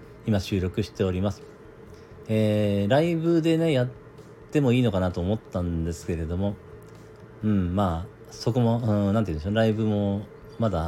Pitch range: 90-115 Hz